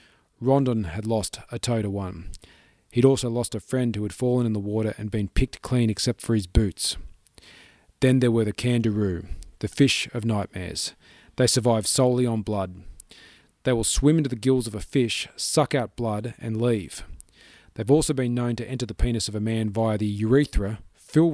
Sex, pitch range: male, 105-130 Hz